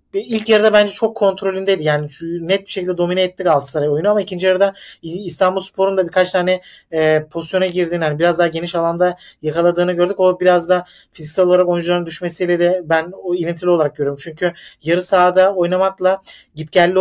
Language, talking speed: Turkish, 170 wpm